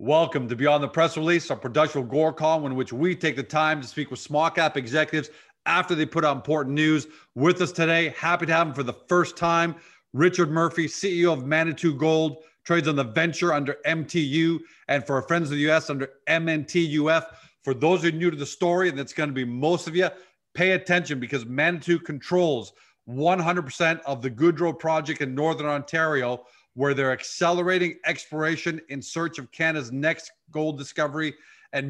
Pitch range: 145-170 Hz